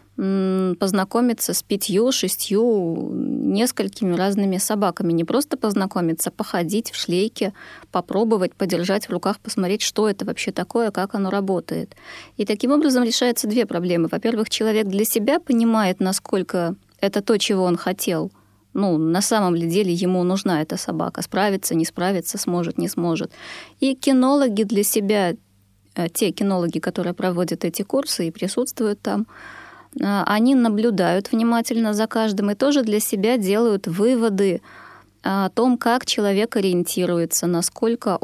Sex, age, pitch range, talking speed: female, 20-39, 180-225 Hz, 140 wpm